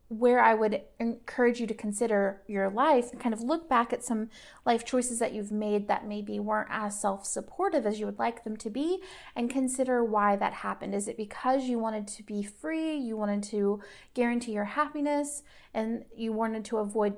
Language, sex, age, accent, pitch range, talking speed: English, female, 30-49, American, 210-260 Hz, 205 wpm